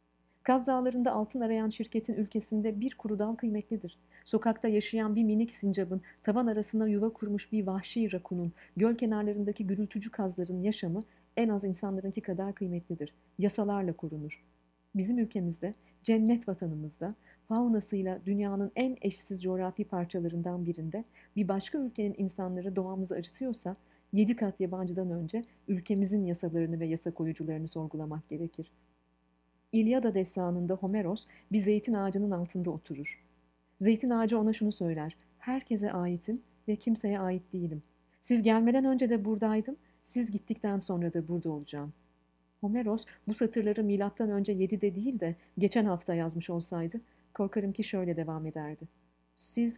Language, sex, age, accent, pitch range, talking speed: Turkish, female, 40-59, native, 170-220 Hz, 135 wpm